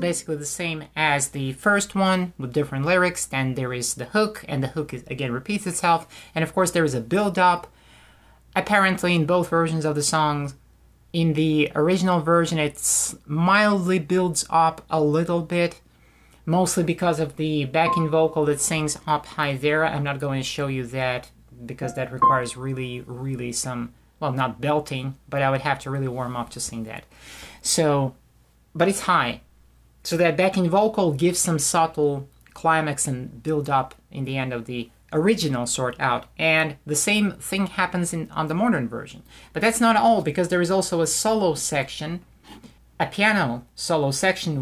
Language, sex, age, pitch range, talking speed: English, male, 30-49, 135-175 Hz, 175 wpm